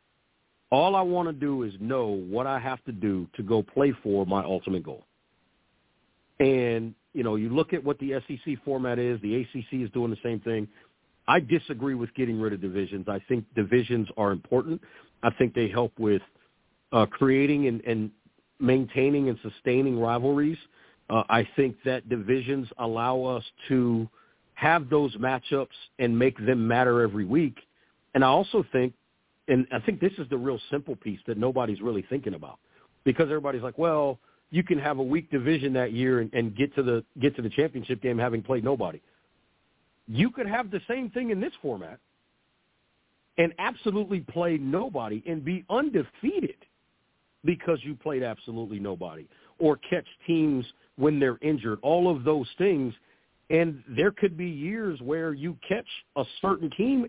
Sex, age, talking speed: male, 50-69, 170 wpm